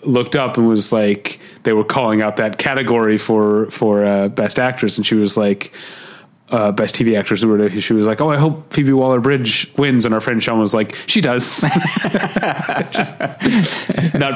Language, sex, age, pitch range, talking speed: English, male, 30-49, 105-135 Hz, 180 wpm